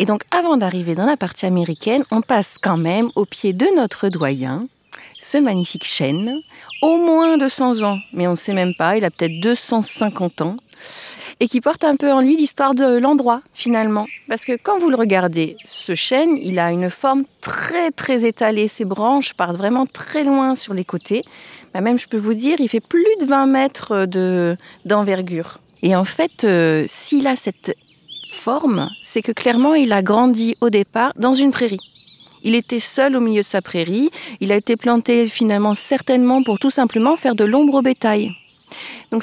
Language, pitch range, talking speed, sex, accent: French, 185-265 Hz, 195 wpm, female, French